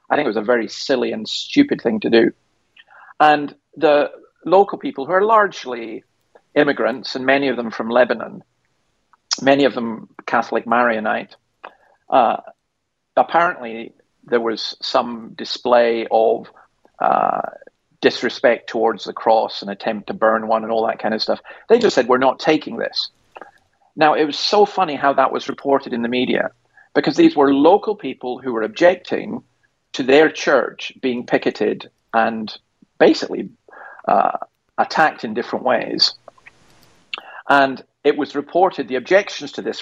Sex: male